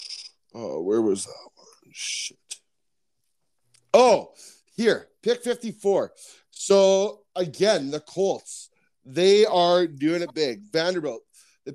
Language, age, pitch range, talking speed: English, 30-49, 140-190 Hz, 105 wpm